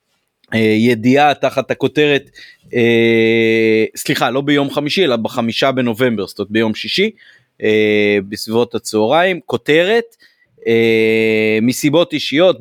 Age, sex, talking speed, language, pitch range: 30-49, male, 105 wpm, Hebrew, 110-140 Hz